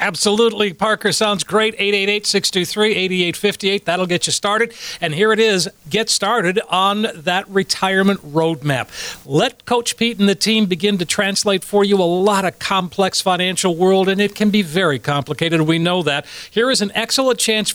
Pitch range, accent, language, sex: 185-230 Hz, American, English, male